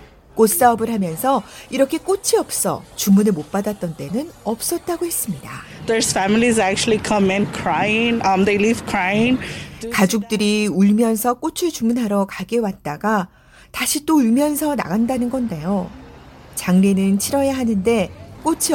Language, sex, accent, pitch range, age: Korean, female, native, 195-275 Hz, 40-59